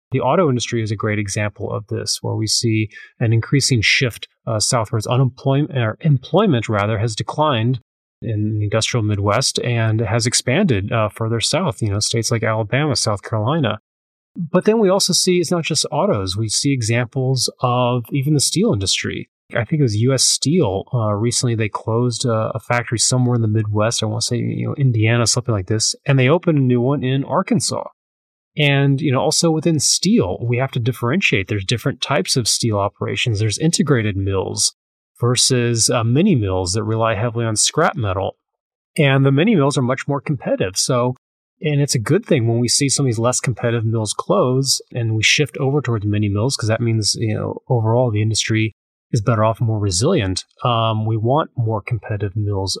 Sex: male